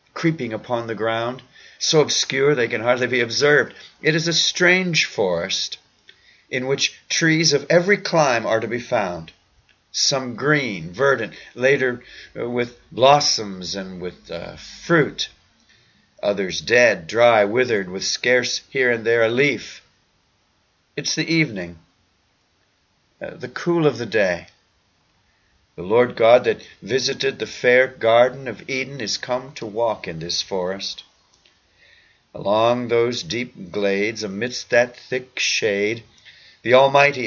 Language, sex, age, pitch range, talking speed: English, male, 50-69, 110-135 Hz, 135 wpm